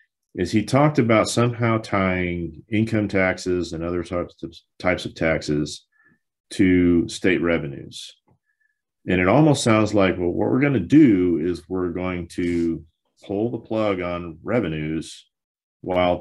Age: 40-59